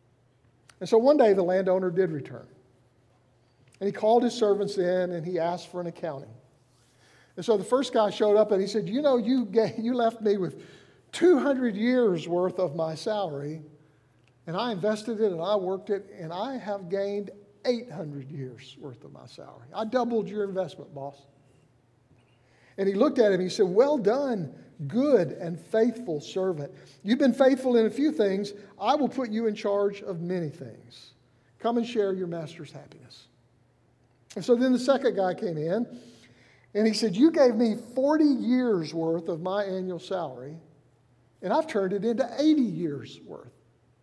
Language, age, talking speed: English, 50-69, 180 wpm